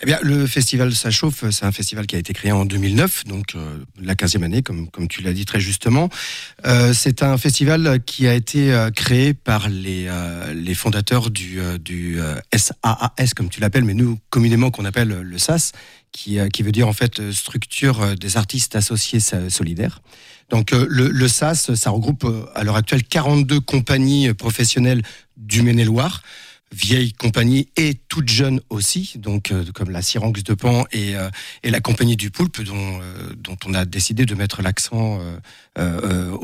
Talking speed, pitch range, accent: 195 wpm, 100-130 Hz, French